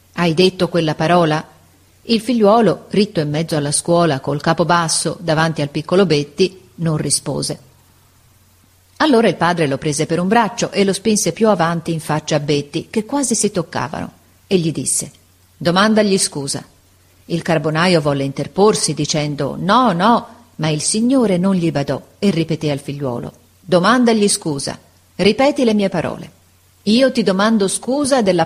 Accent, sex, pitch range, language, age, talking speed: native, female, 145-195 Hz, Italian, 40-59, 155 wpm